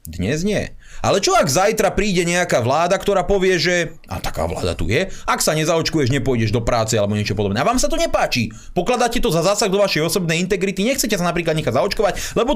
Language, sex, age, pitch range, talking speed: Slovak, male, 30-49, 120-195 Hz, 215 wpm